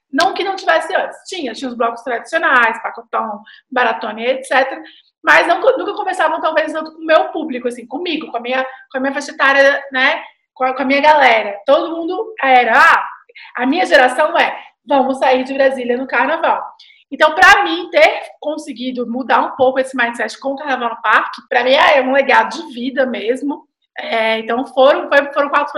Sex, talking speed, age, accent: female, 190 wpm, 20-39, Brazilian